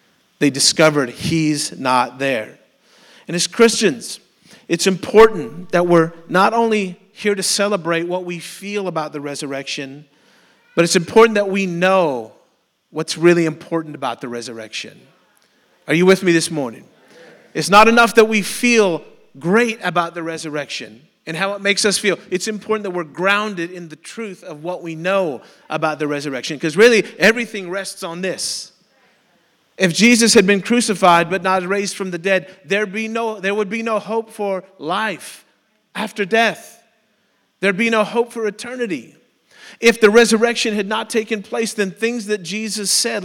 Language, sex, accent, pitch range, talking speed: English, male, American, 170-220 Hz, 165 wpm